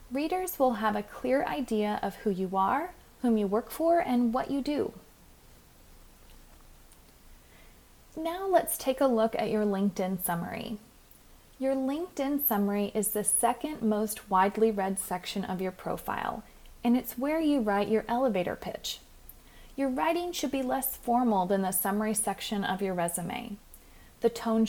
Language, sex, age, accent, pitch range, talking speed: English, female, 30-49, American, 195-260 Hz, 155 wpm